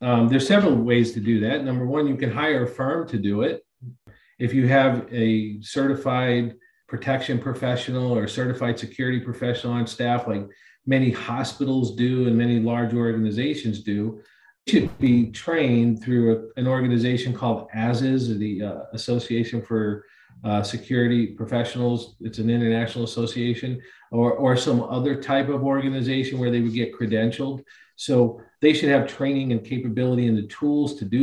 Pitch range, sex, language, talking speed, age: 115-135 Hz, male, English, 165 wpm, 40-59